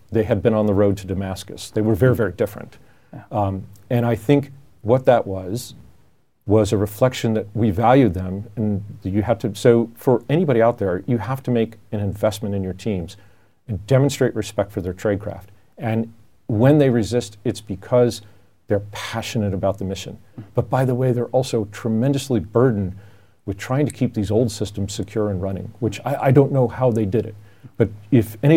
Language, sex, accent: Swedish, male, American